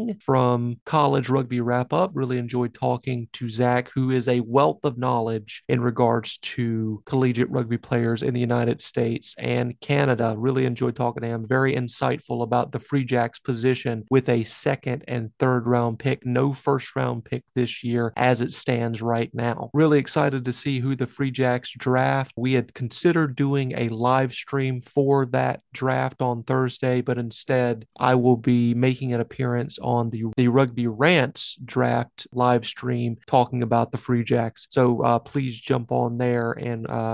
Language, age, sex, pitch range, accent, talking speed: English, 30-49, male, 120-135 Hz, American, 175 wpm